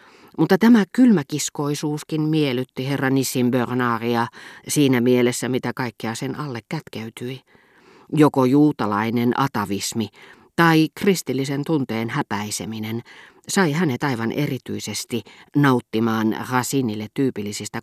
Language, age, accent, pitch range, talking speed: Finnish, 40-59, native, 115-150 Hz, 95 wpm